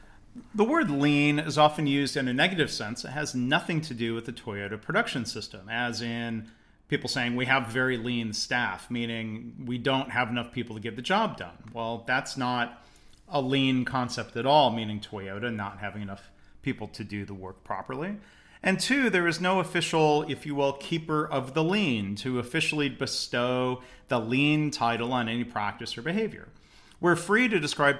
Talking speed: 185 wpm